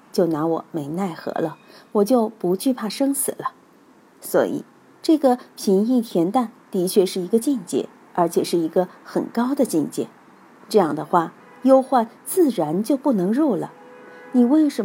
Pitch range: 185-260 Hz